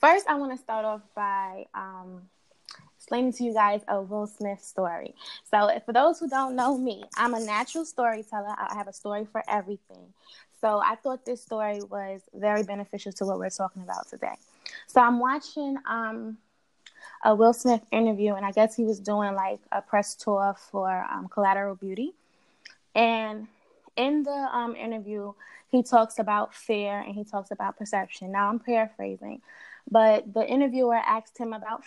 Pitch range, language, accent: 205-240 Hz, English, American